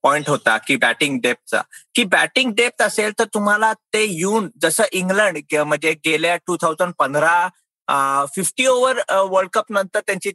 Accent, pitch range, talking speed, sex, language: native, 170-230 Hz, 150 wpm, male, Marathi